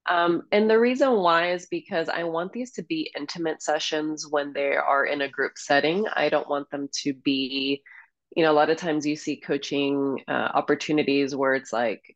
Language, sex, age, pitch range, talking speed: English, female, 20-39, 140-175 Hz, 200 wpm